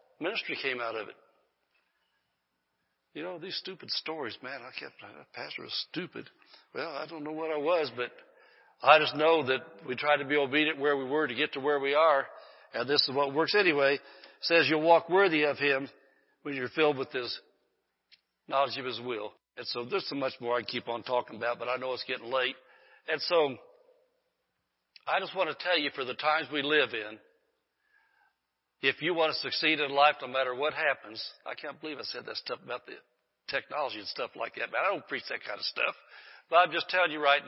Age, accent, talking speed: 60-79, American, 215 wpm